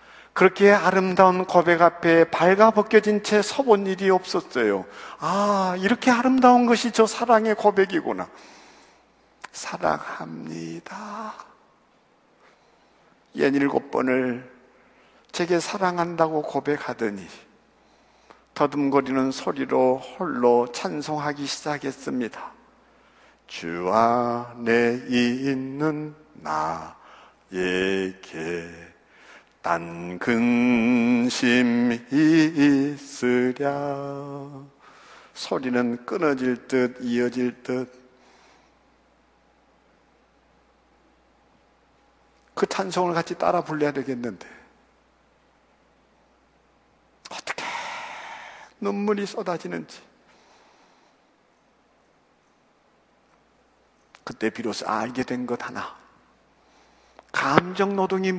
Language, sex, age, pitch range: Korean, male, 60-79, 120-190 Hz